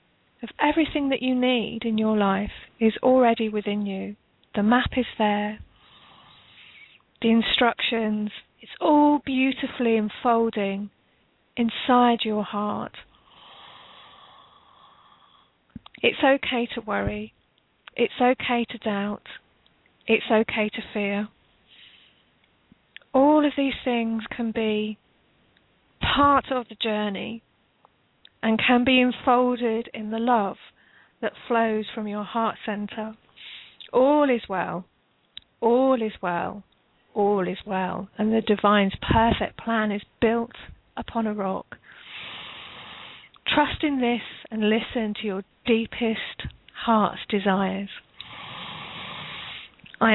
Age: 30-49